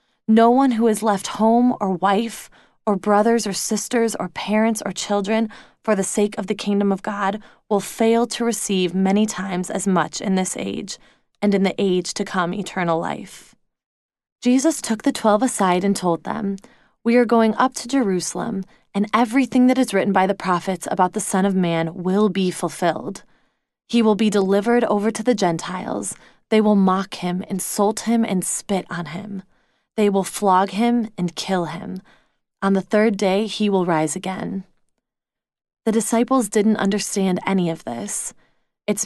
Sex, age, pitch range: female, 20-39, 190-225 Hz